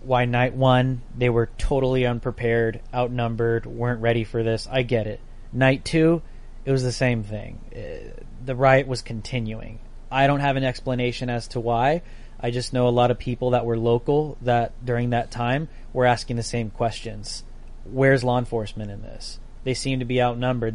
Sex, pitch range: male, 115-130 Hz